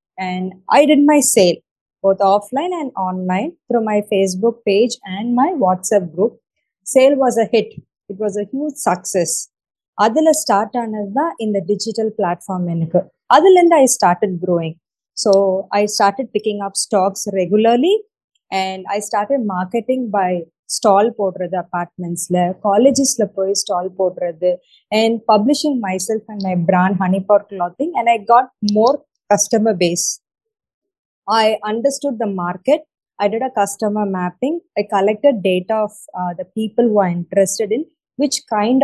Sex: female